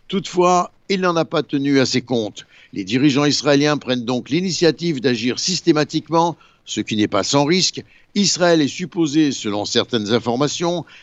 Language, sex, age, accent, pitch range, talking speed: Italian, male, 60-79, French, 125-165 Hz, 160 wpm